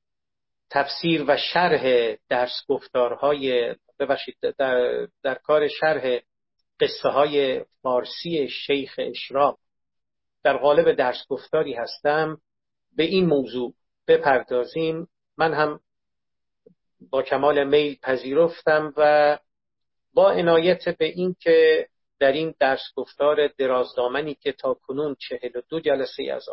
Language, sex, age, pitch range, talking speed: Persian, male, 50-69, 130-175 Hz, 105 wpm